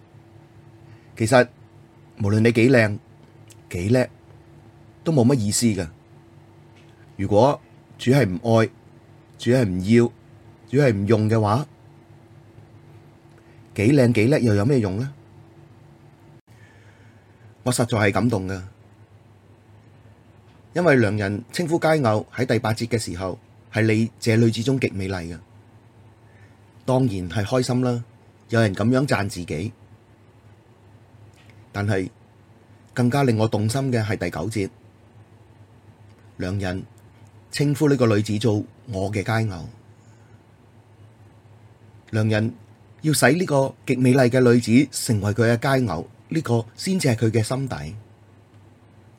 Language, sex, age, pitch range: Chinese, male, 30-49, 110-120 Hz